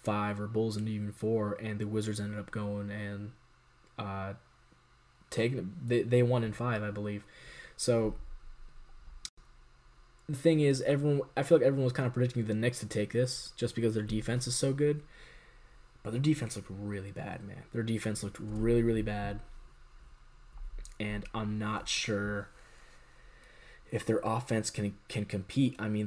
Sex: male